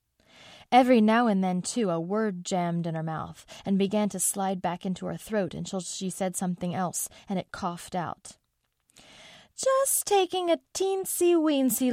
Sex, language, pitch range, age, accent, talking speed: female, English, 170-210 Hz, 30-49, American, 160 wpm